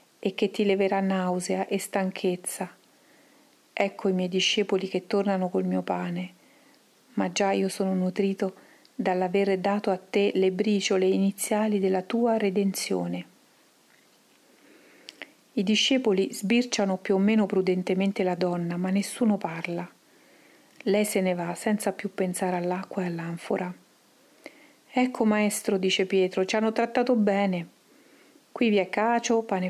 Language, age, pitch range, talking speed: Italian, 40-59, 185-225 Hz, 135 wpm